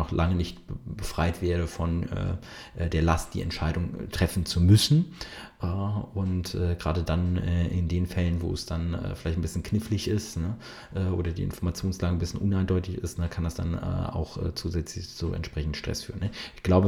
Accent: German